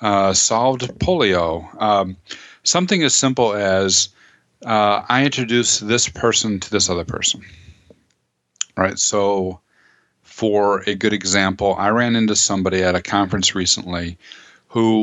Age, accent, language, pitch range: 40-59, American, English, 95-120 Hz